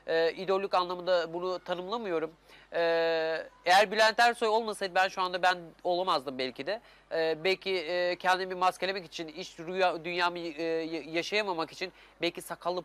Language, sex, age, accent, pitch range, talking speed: Turkish, male, 30-49, native, 165-190 Hz, 145 wpm